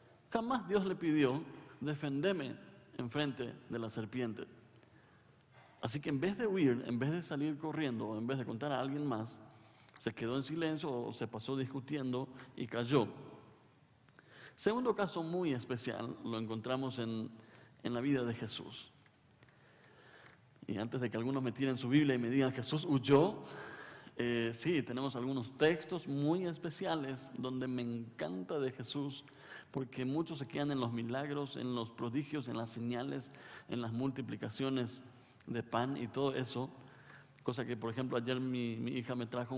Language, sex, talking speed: Spanish, male, 165 wpm